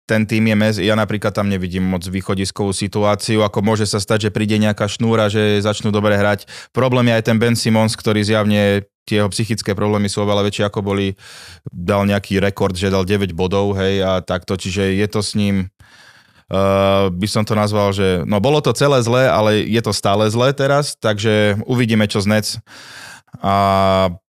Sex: male